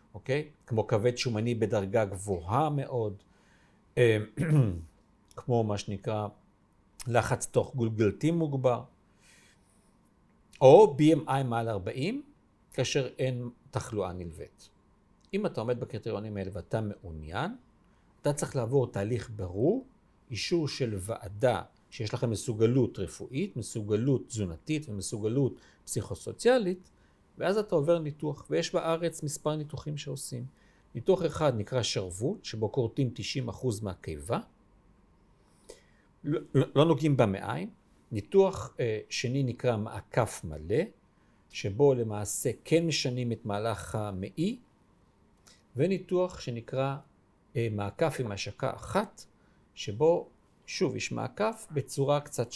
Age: 50-69